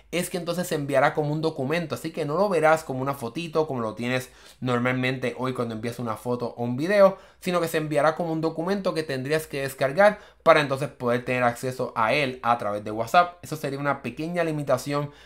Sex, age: male, 20-39